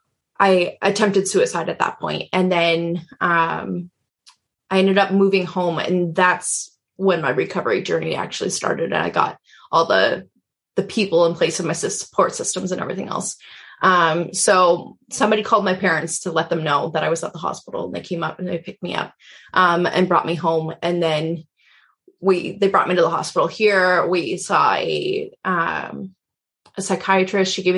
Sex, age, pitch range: female, 20-39, 175-210 Hz